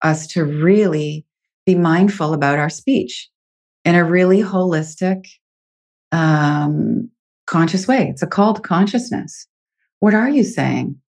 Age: 30-49